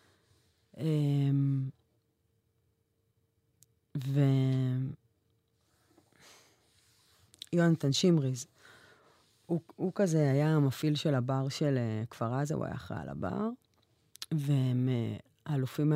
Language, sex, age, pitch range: English, female, 30-49, 115-150 Hz